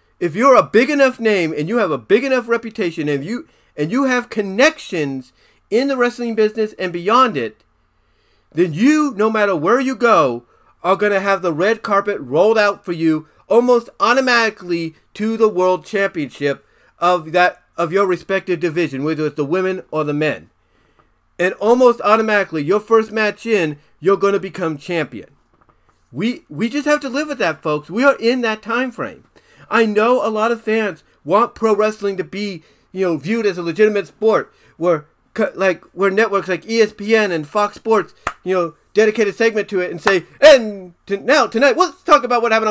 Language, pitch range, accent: English, 175-235 Hz, American